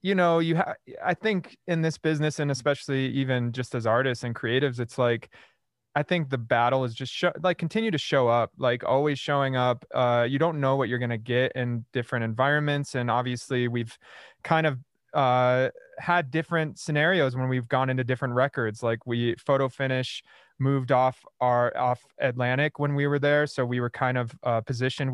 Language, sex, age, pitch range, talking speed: English, male, 20-39, 120-140 Hz, 195 wpm